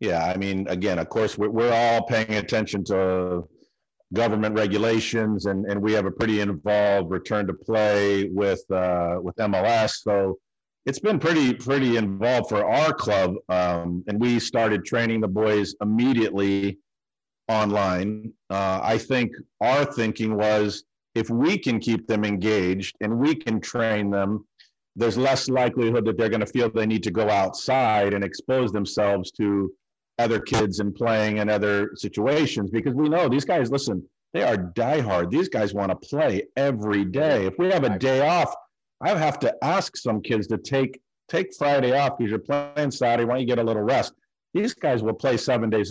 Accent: American